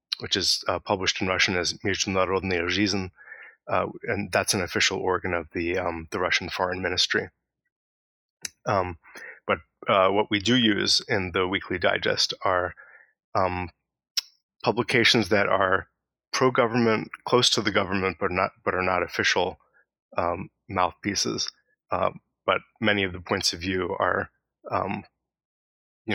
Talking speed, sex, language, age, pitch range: 140 wpm, male, English, 20-39, 90-105 Hz